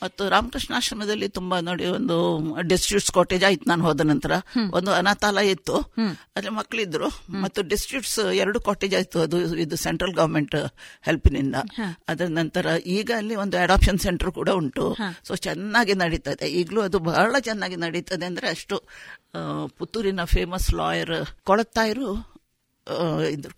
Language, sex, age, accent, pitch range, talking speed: Kannada, female, 50-69, native, 175-215 Hz, 125 wpm